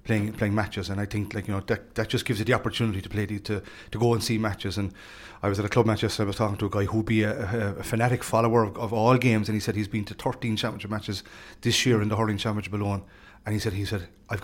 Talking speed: 295 wpm